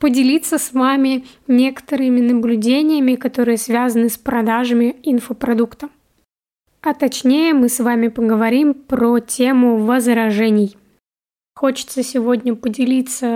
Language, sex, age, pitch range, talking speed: Russian, female, 20-39, 240-270 Hz, 100 wpm